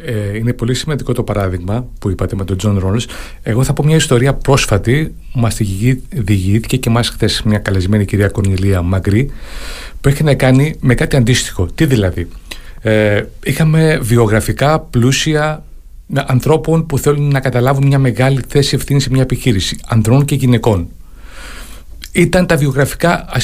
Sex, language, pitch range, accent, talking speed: male, Greek, 105-145 Hz, native, 150 wpm